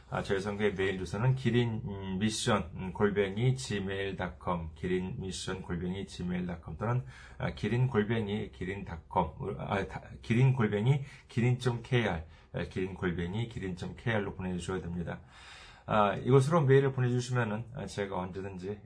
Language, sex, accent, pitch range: Korean, male, native, 95-130 Hz